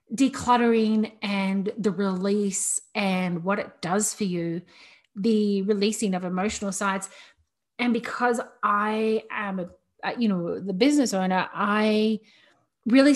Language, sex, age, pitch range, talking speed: English, female, 30-49, 190-225 Hz, 125 wpm